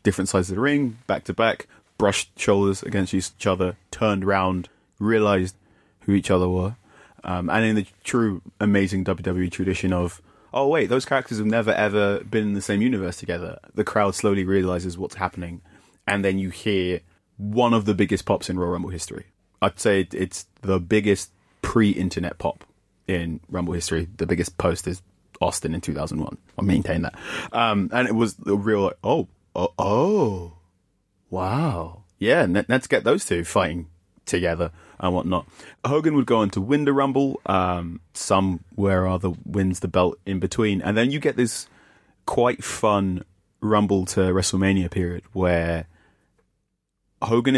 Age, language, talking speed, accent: 20-39, English, 165 wpm, British